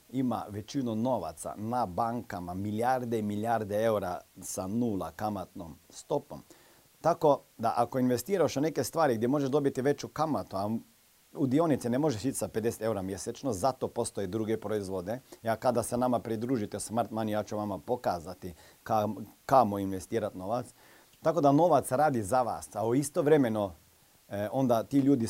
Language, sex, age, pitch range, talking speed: Croatian, male, 40-59, 105-130 Hz, 150 wpm